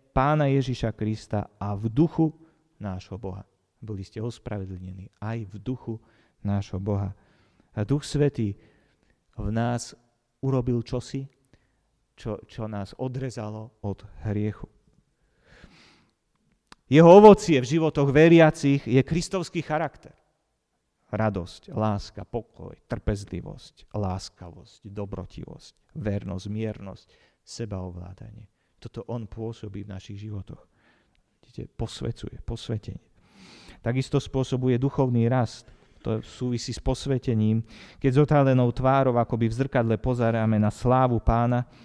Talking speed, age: 110 wpm, 40-59